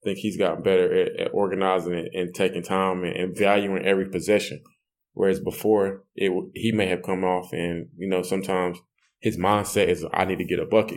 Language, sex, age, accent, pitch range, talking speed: English, male, 20-39, American, 95-110 Hz, 210 wpm